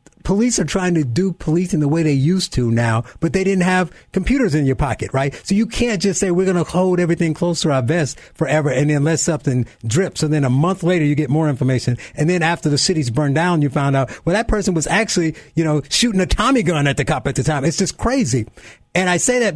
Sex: male